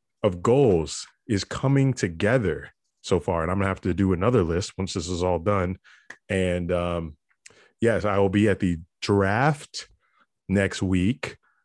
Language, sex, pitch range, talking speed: English, male, 90-110 Hz, 160 wpm